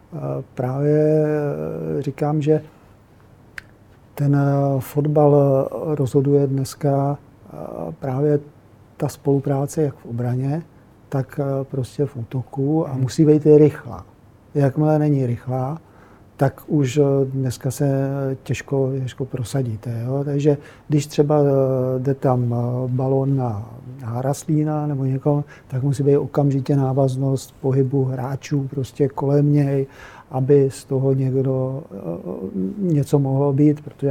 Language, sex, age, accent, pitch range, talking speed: Czech, male, 50-69, native, 125-145 Hz, 110 wpm